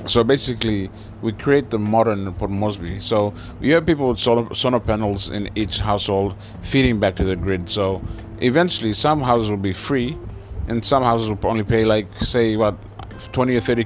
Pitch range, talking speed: 95-115 Hz, 180 wpm